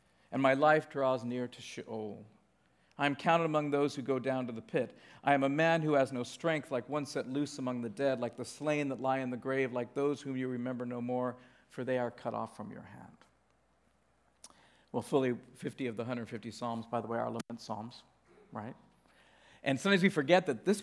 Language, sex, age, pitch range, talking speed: English, male, 50-69, 130-205 Hz, 220 wpm